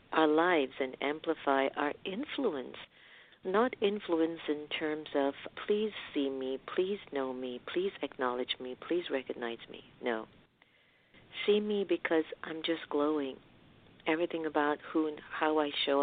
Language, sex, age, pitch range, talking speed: English, female, 50-69, 135-170 Hz, 140 wpm